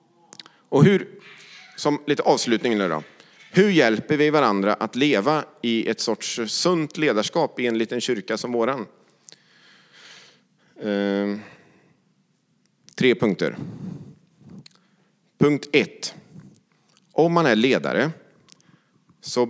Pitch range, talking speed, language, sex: 110-160 Hz, 100 wpm, English, male